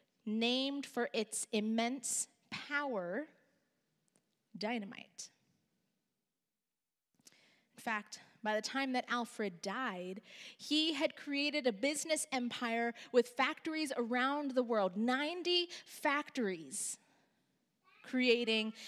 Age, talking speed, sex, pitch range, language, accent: 20-39, 90 wpm, female, 215-270 Hz, English, American